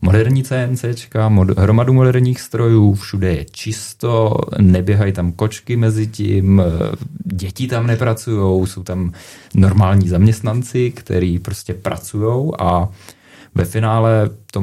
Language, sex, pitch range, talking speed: Czech, male, 90-115 Hz, 110 wpm